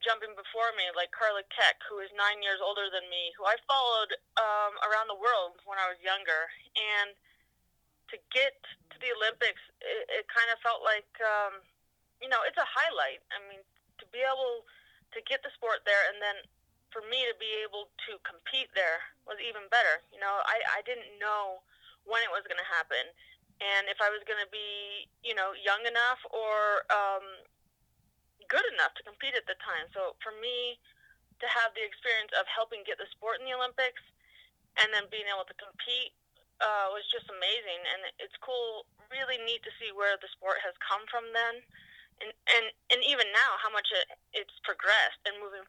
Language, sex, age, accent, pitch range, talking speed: English, female, 20-39, American, 200-265 Hz, 190 wpm